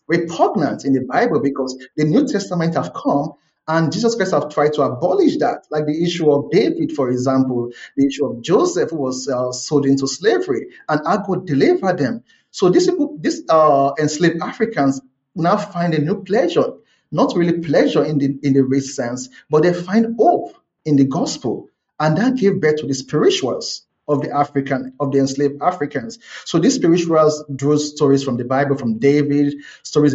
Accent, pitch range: Nigerian, 130-155 Hz